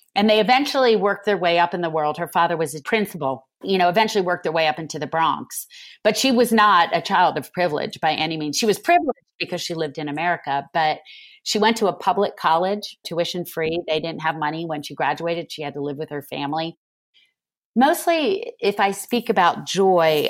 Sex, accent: female, American